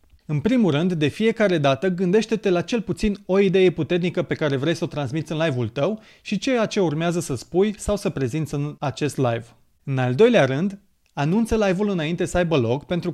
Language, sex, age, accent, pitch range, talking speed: Romanian, male, 30-49, native, 140-190 Hz, 205 wpm